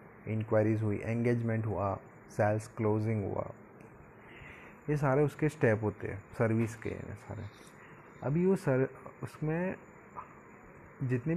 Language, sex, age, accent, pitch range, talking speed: Hindi, male, 30-49, native, 115-150 Hz, 110 wpm